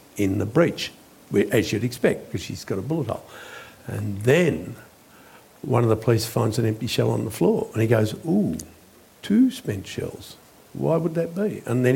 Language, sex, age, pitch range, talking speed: English, male, 60-79, 105-130 Hz, 190 wpm